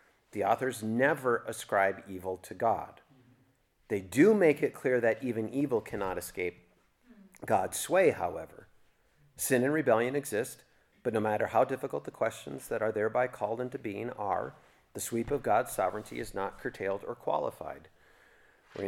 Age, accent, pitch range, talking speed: 40-59, American, 105-140 Hz, 155 wpm